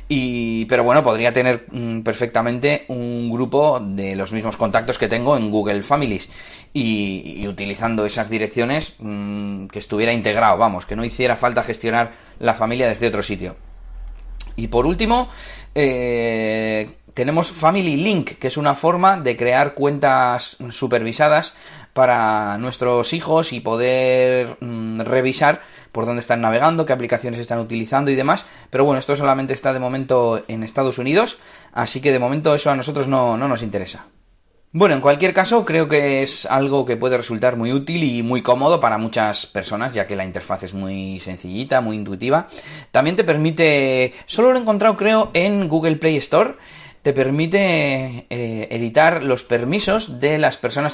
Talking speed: 160 wpm